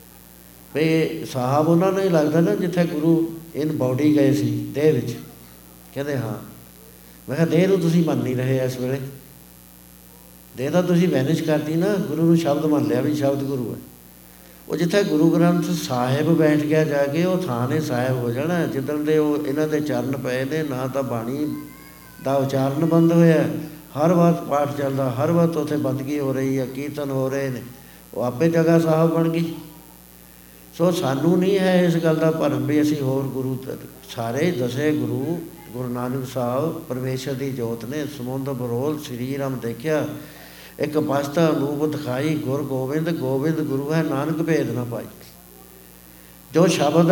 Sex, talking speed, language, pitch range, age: male, 170 wpm, Punjabi, 120-160 Hz, 60-79